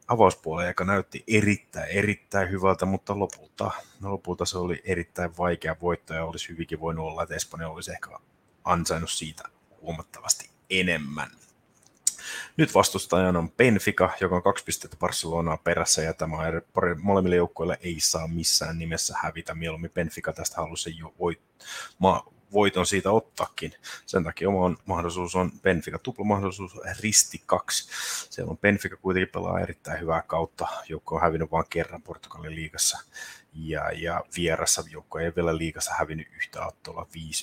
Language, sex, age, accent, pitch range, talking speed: Finnish, male, 30-49, native, 80-90 Hz, 145 wpm